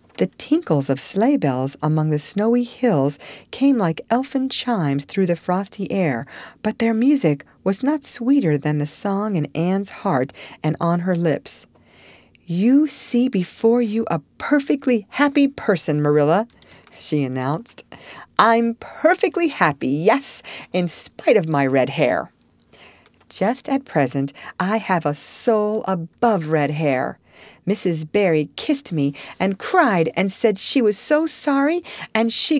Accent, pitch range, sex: American, 150-235 Hz, female